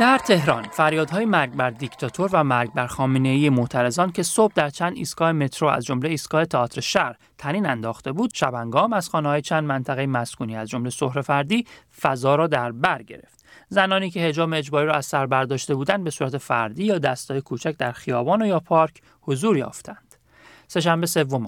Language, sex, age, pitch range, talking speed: English, male, 40-59, 130-170 Hz, 175 wpm